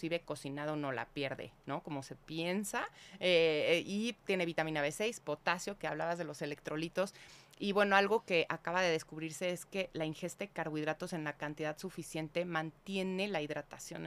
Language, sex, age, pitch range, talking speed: Spanish, female, 30-49, 155-200 Hz, 165 wpm